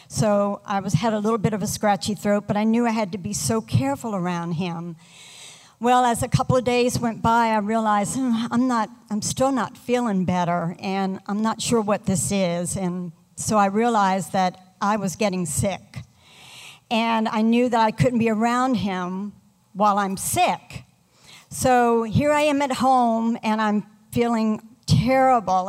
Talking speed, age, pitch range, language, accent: 180 wpm, 60-79, 195-235 Hz, English, American